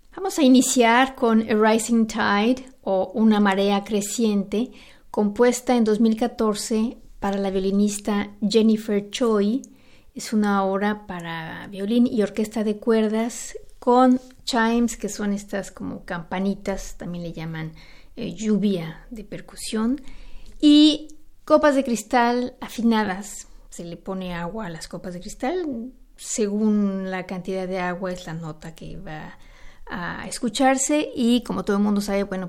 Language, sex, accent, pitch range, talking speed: Spanish, female, Mexican, 190-240 Hz, 140 wpm